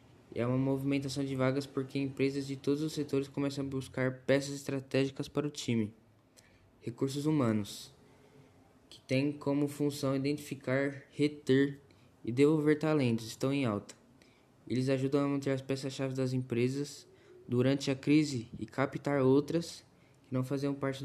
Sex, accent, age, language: male, Brazilian, 10-29, Portuguese